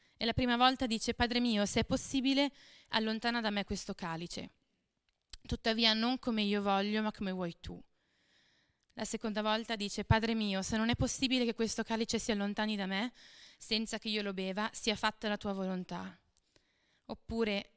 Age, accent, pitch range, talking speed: 20-39, native, 195-225 Hz, 175 wpm